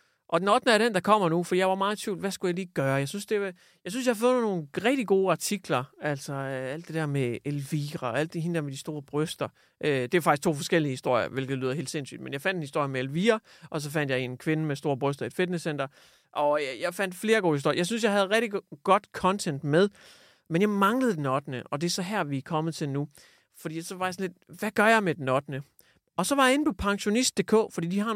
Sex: male